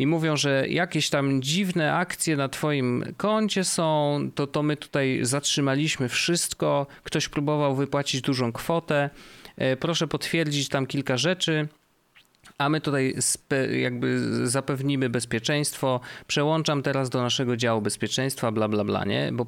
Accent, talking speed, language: native, 140 wpm, Polish